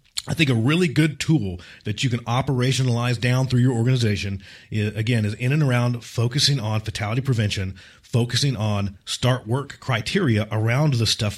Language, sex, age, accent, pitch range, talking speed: English, male, 40-59, American, 110-155 Hz, 165 wpm